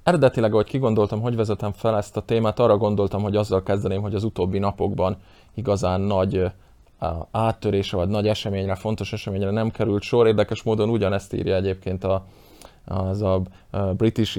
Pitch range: 100-115 Hz